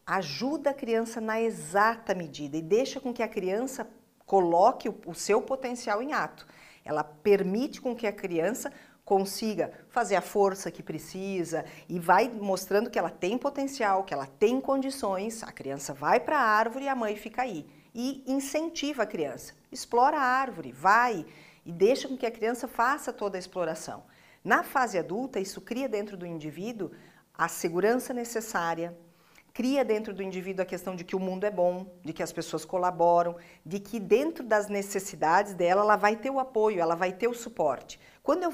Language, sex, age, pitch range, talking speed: Portuguese, female, 50-69, 180-245 Hz, 180 wpm